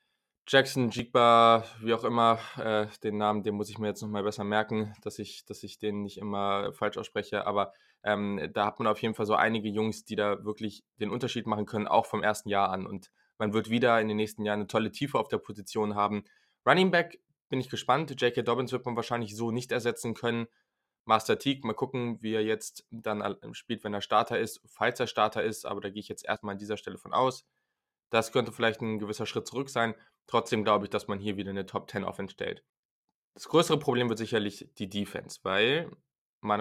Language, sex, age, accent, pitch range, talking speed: German, male, 20-39, German, 105-115 Hz, 220 wpm